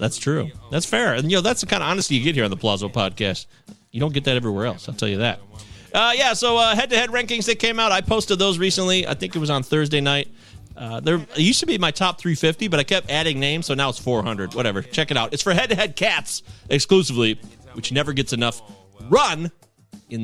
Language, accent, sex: English, American, male